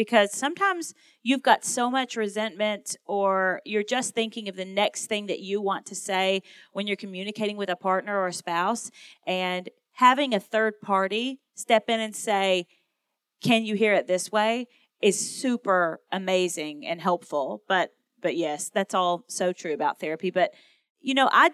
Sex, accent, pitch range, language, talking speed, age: female, American, 185-225 Hz, English, 175 wpm, 30-49